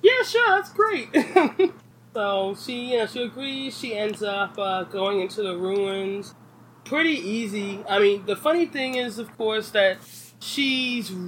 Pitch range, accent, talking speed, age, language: 170-215 Hz, American, 155 wpm, 20-39, English